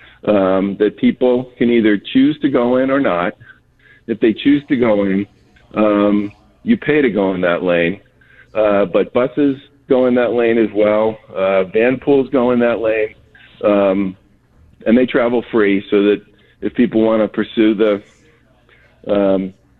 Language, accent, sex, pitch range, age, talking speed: English, American, male, 100-120 Hz, 50-69, 165 wpm